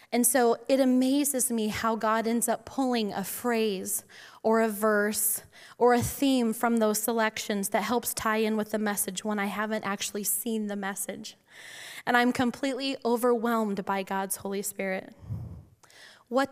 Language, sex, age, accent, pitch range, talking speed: English, female, 10-29, American, 210-250 Hz, 160 wpm